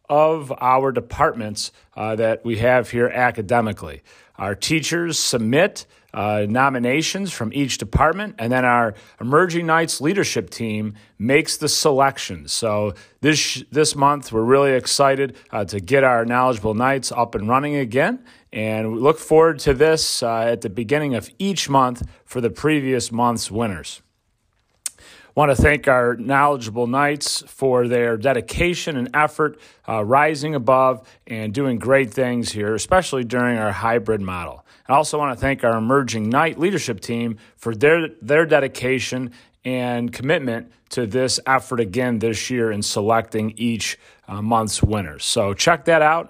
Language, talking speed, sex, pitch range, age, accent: English, 155 wpm, male, 110-145 Hz, 40-59, American